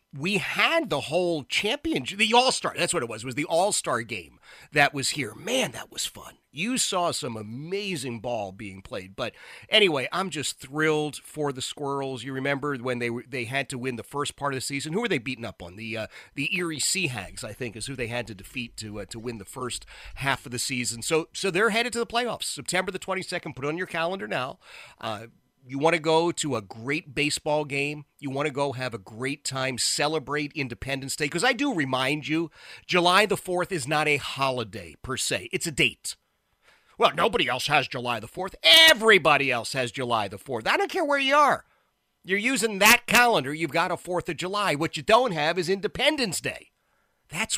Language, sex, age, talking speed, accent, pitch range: English, male, 40-59, 220 wpm, American, 125-175 Hz